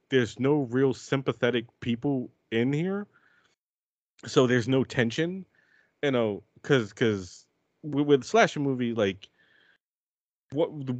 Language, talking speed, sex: English, 115 wpm, male